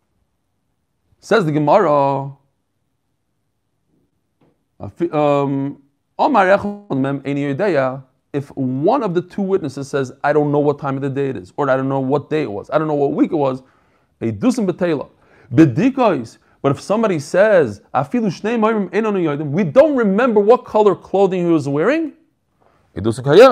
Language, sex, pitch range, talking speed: English, male, 140-200 Hz, 125 wpm